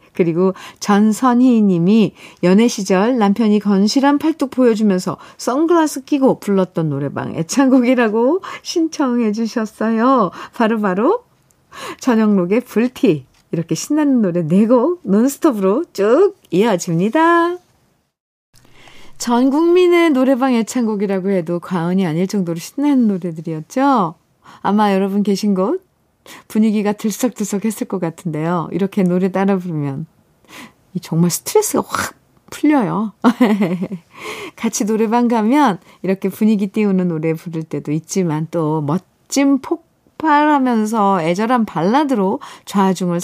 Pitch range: 180-250 Hz